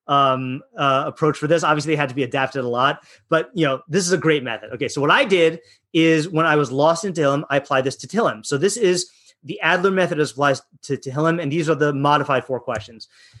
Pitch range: 135-180 Hz